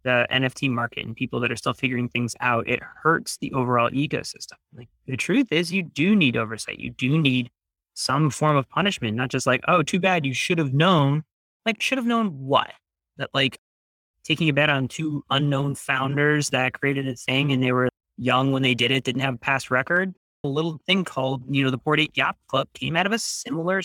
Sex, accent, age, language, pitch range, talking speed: male, American, 30-49, English, 115-140 Hz, 220 wpm